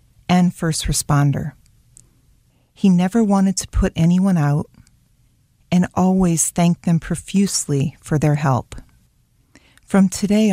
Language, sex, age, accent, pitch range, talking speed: English, female, 40-59, American, 145-180 Hz, 115 wpm